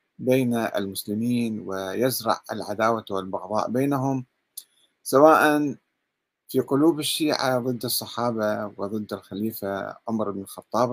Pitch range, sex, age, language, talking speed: 105-140 Hz, male, 50-69, Arabic, 95 wpm